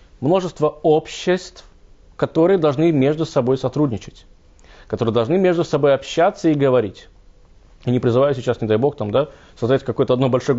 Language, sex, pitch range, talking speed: Russian, male, 105-145 Hz, 155 wpm